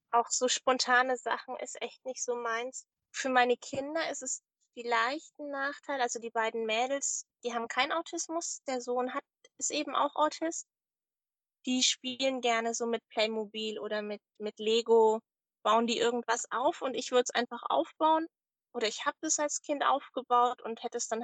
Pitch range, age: 220-265 Hz, 20-39